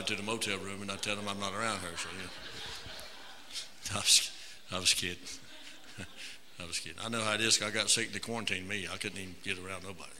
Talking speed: 230 wpm